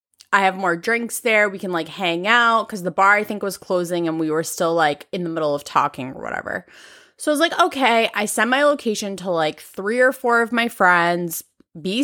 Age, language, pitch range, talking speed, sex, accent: 20-39, English, 175-235 Hz, 235 wpm, female, American